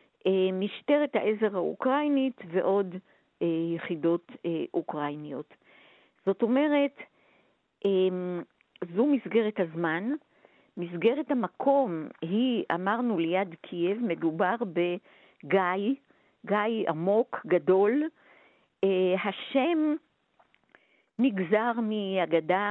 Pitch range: 170-250 Hz